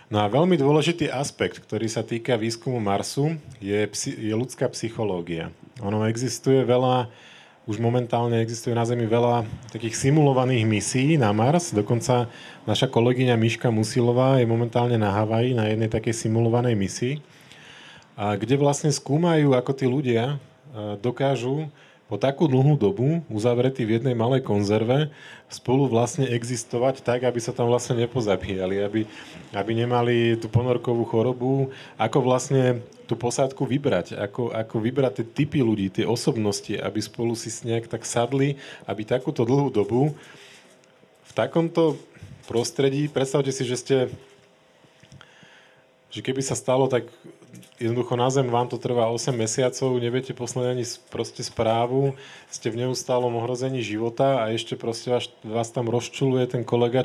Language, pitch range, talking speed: Slovak, 115-135 Hz, 140 wpm